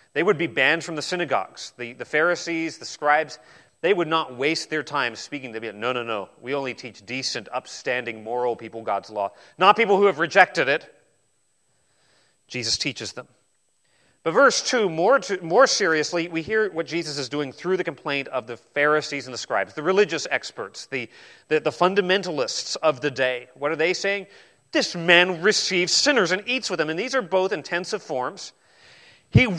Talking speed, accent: 190 wpm, American